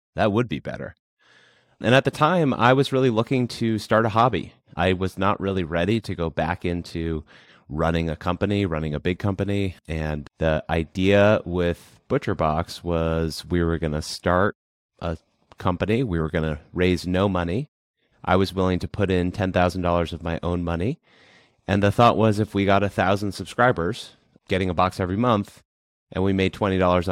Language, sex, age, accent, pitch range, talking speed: English, male, 30-49, American, 85-105 Hz, 180 wpm